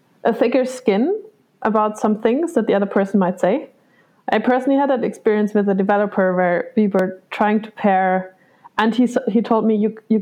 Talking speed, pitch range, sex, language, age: 195 wpm, 205-245 Hz, female, English, 20-39